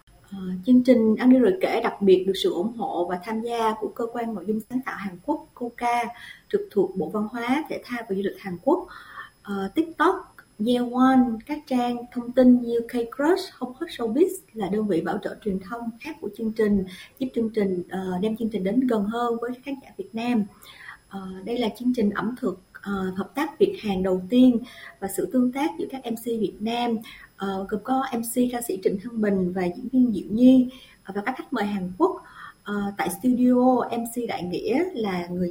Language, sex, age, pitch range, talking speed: Vietnamese, female, 20-39, 200-255 Hz, 220 wpm